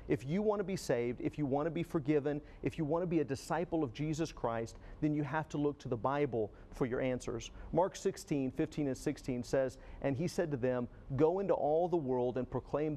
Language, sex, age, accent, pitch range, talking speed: English, male, 50-69, American, 130-160 Hz, 235 wpm